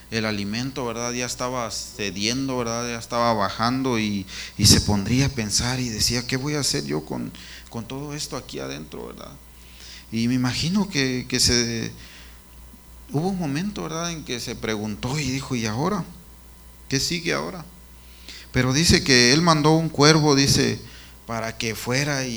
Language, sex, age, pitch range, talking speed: Spanish, male, 30-49, 100-135 Hz, 170 wpm